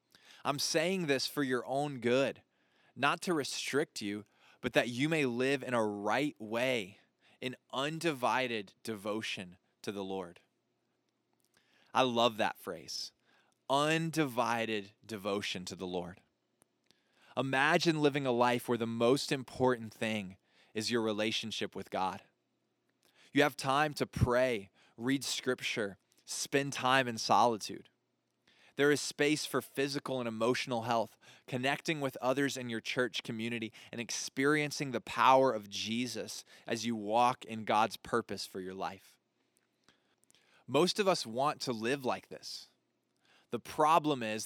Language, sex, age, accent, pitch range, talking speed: English, male, 20-39, American, 110-140 Hz, 135 wpm